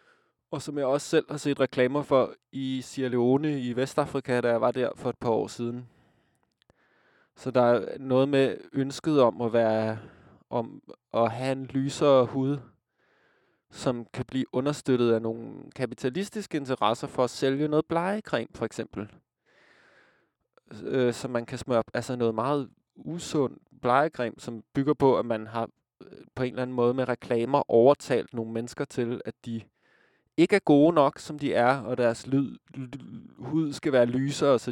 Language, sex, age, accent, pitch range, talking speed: Danish, male, 20-39, native, 120-145 Hz, 170 wpm